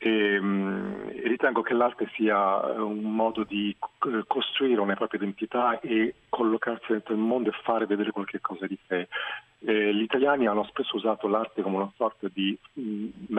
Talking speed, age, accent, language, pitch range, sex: 160 wpm, 40-59, native, Italian, 95-110 Hz, male